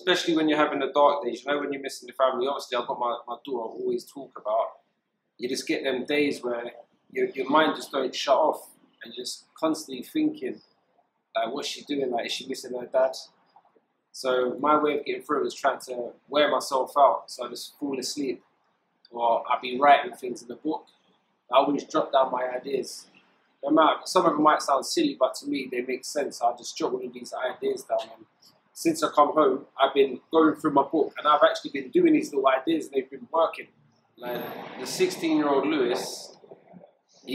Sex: male